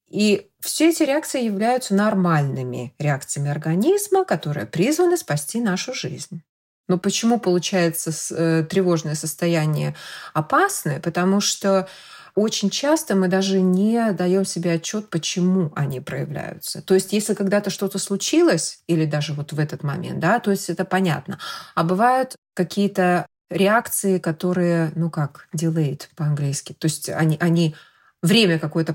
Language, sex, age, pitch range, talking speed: Russian, female, 20-39, 160-200 Hz, 135 wpm